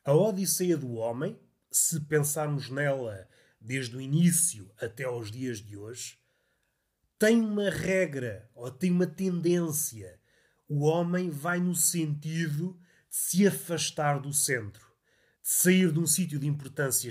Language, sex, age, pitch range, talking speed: Portuguese, male, 30-49, 135-185 Hz, 135 wpm